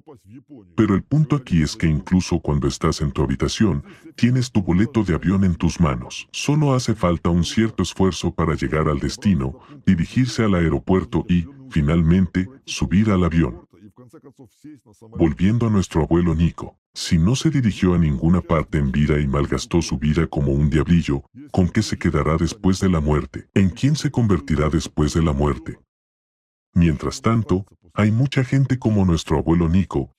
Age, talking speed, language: 40-59, 165 wpm, Spanish